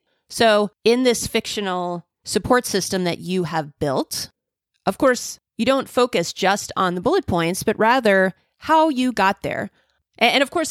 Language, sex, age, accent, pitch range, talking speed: English, female, 30-49, American, 175-245 Hz, 165 wpm